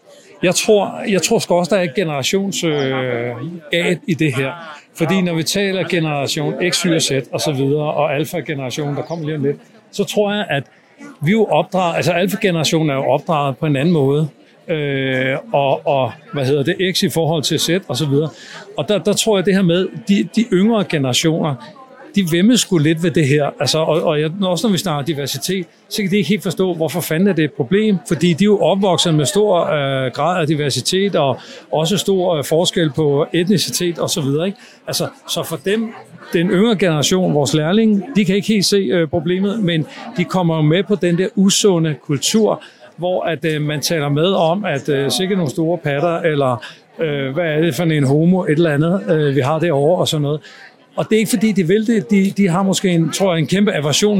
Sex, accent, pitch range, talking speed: male, native, 155-195 Hz, 215 wpm